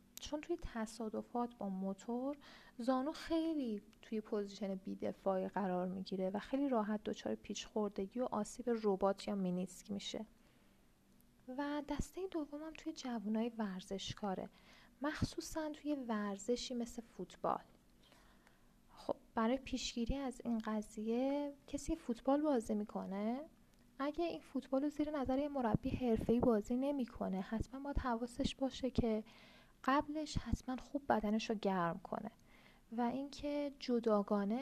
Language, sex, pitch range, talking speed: Persian, female, 210-265 Hz, 120 wpm